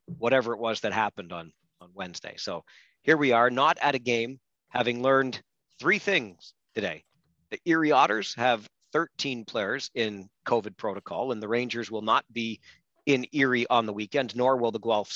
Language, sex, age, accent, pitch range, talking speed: English, male, 40-59, American, 115-140 Hz, 180 wpm